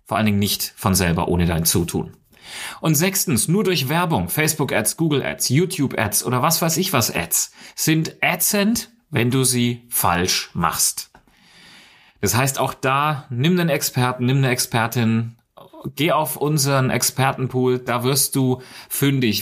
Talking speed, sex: 150 wpm, male